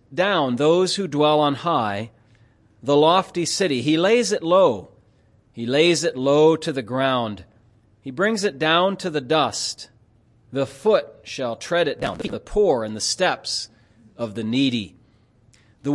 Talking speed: 160 wpm